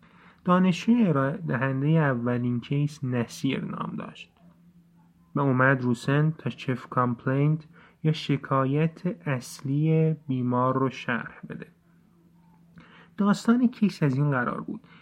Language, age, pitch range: Persian, 30-49, 130-170 Hz